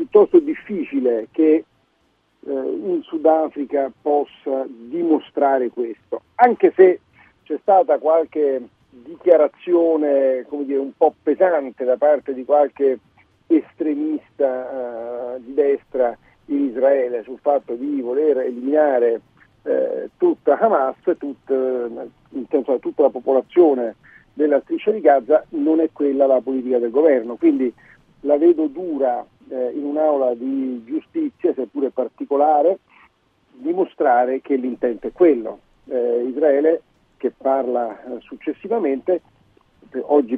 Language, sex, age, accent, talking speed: Italian, male, 50-69, native, 115 wpm